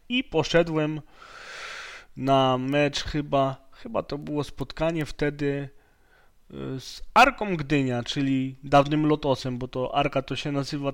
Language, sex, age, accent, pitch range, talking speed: Polish, male, 20-39, native, 135-155 Hz, 120 wpm